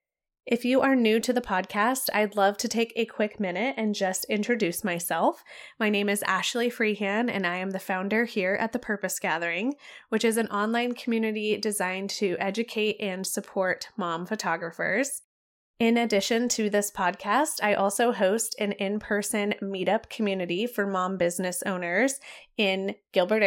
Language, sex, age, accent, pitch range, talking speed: English, female, 20-39, American, 190-230 Hz, 160 wpm